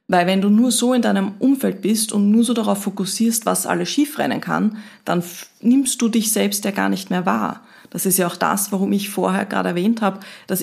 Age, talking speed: 30-49, 230 wpm